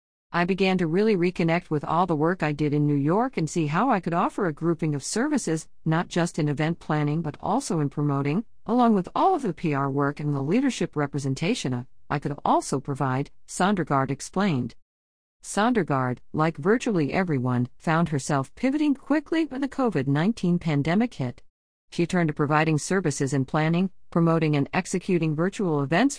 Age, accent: 50-69, American